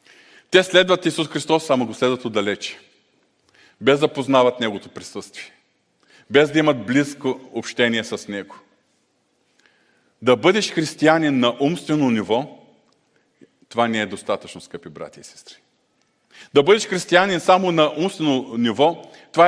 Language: Bulgarian